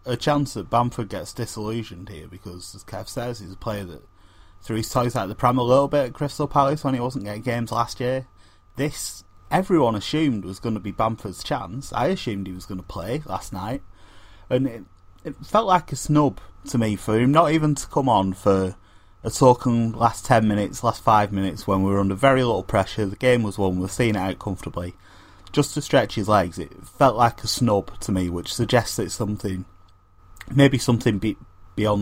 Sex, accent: male, British